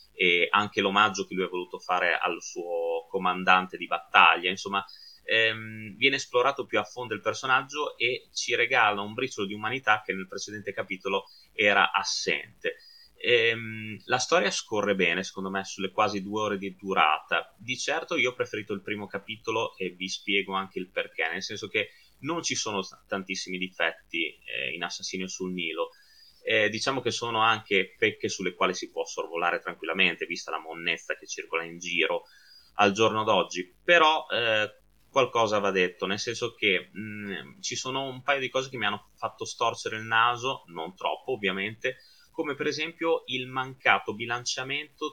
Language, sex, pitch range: Italian, male, 100-145 Hz